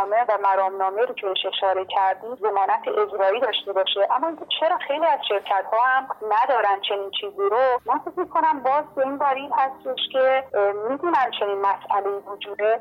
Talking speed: 165 wpm